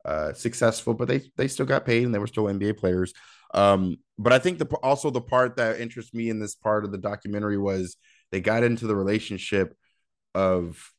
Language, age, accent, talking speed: English, 20-39, American, 205 wpm